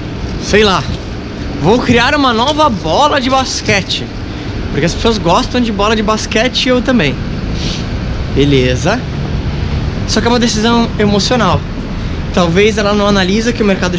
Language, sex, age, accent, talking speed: Portuguese, male, 20-39, Brazilian, 145 wpm